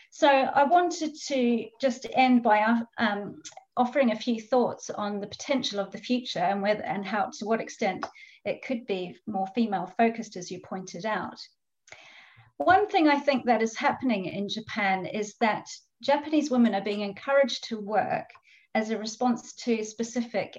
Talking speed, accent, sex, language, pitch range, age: 165 wpm, British, female, English, 200-255 Hz, 40-59